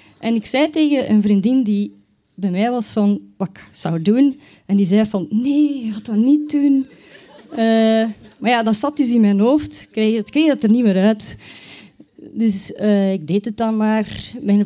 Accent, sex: Dutch, female